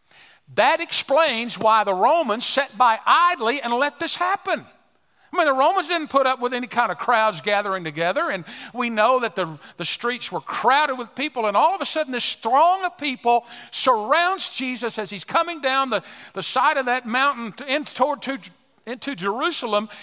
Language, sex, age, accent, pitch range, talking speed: English, male, 50-69, American, 210-285 Hz, 190 wpm